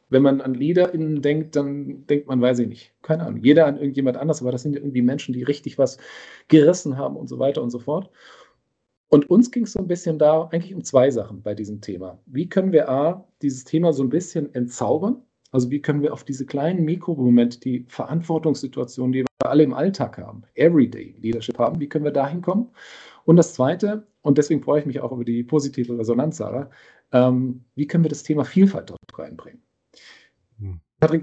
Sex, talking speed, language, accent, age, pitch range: male, 205 wpm, German, German, 40-59, 125-155 Hz